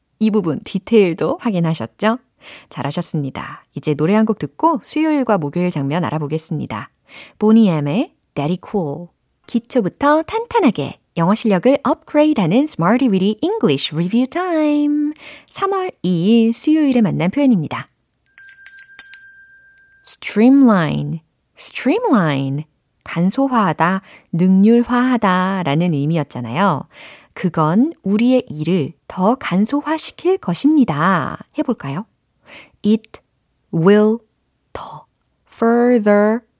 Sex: female